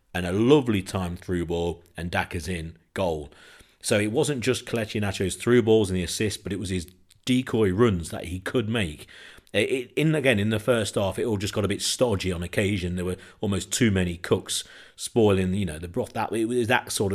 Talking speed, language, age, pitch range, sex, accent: 225 wpm, English, 40-59, 95-115 Hz, male, British